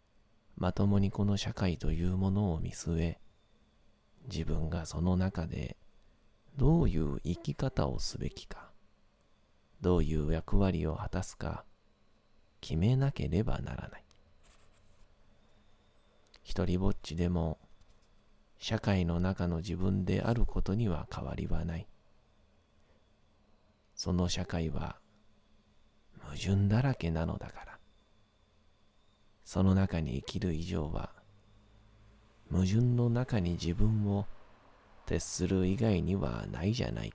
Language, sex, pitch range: Japanese, male, 90-105 Hz